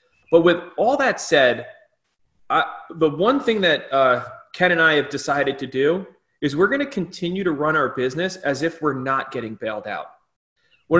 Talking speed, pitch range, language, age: 190 wpm, 150-215 Hz, English, 30-49